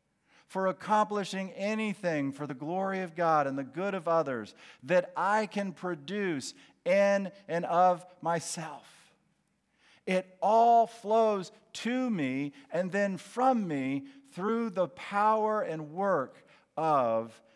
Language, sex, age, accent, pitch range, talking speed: English, male, 50-69, American, 145-220 Hz, 125 wpm